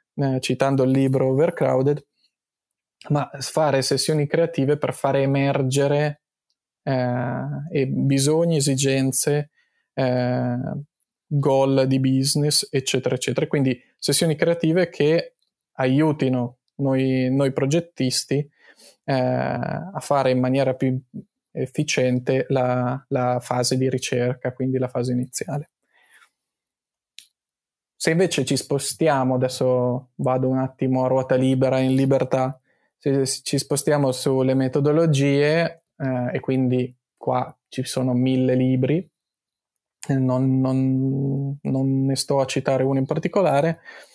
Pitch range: 130-145 Hz